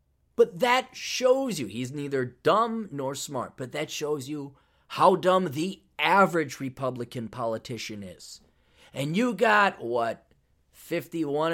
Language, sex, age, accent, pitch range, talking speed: English, male, 30-49, American, 120-170 Hz, 130 wpm